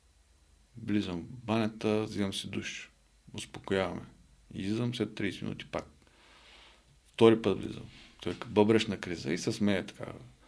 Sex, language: male, Bulgarian